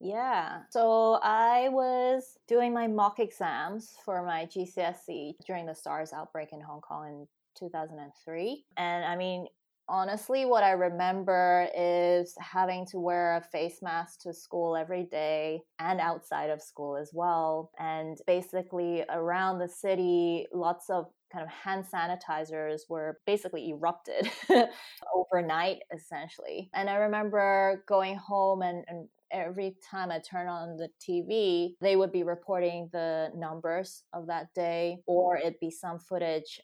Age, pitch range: 20-39, 165-195 Hz